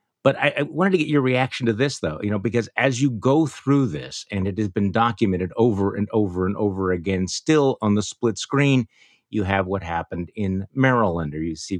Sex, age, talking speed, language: male, 50-69, 225 wpm, English